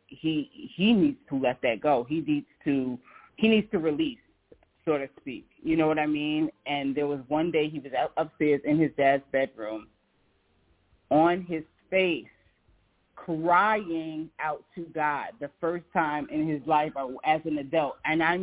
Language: English